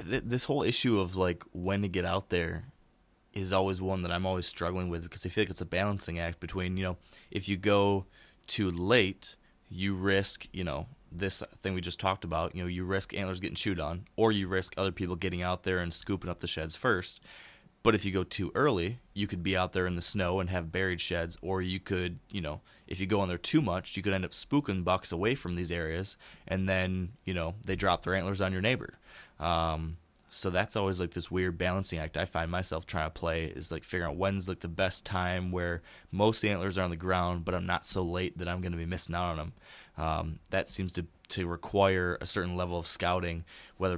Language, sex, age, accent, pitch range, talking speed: English, male, 20-39, American, 85-95 Hz, 235 wpm